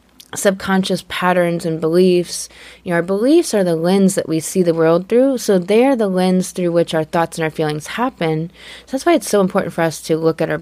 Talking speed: 220 wpm